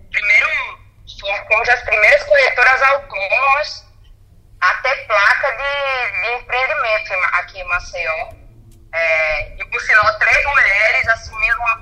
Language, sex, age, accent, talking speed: Portuguese, female, 20-39, Brazilian, 110 wpm